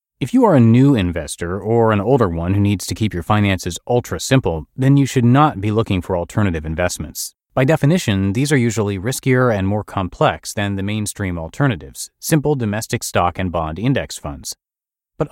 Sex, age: male, 30-49